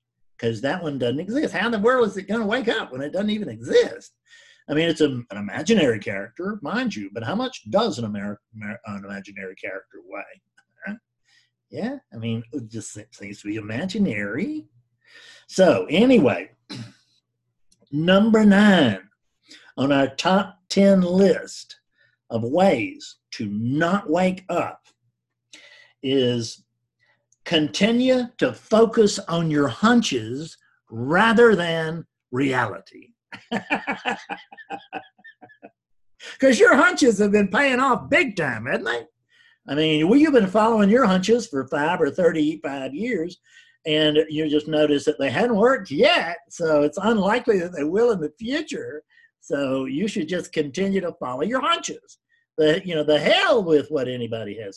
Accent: American